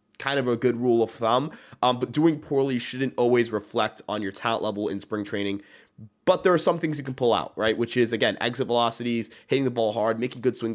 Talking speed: 240 wpm